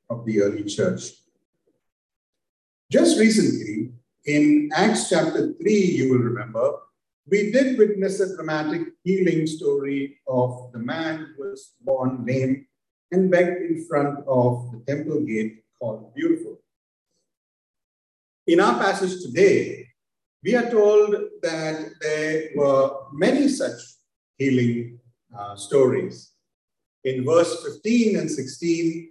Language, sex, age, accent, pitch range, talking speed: English, male, 50-69, Indian, 135-210 Hz, 120 wpm